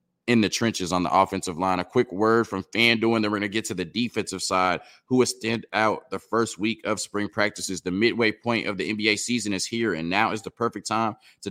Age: 20-39